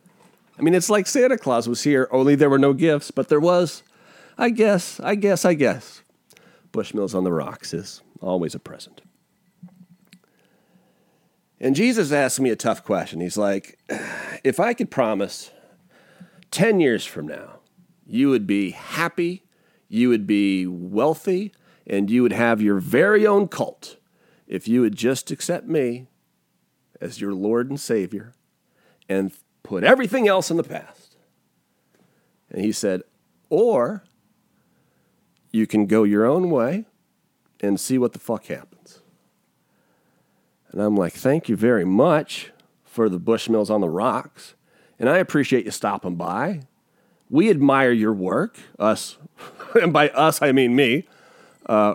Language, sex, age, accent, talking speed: English, male, 40-59, American, 150 wpm